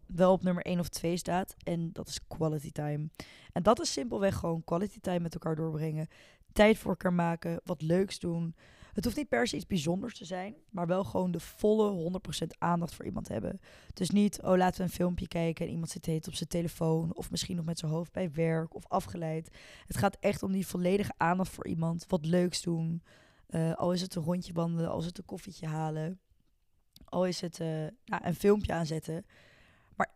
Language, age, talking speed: Dutch, 20-39, 215 wpm